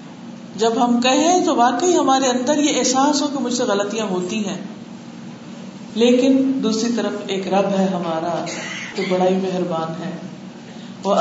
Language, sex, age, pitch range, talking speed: Urdu, female, 50-69, 200-255 Hz, 155 wpm